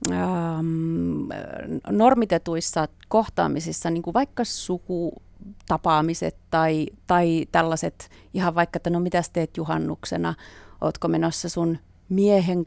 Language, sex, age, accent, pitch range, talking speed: Finnish, female, 30-49, native, 165-205 Hz, 105 wpm